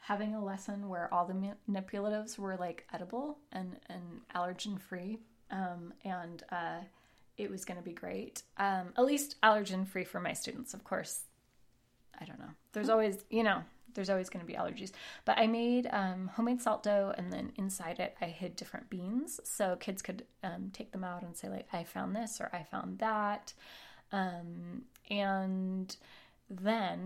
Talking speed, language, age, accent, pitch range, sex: 180 wpm, English, 20-39, American, 180-210 Hz, female